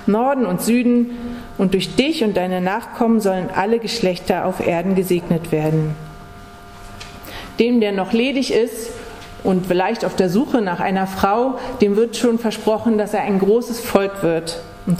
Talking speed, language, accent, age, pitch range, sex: 160 wpm, German, German, 40-59, 165-230 Hz, female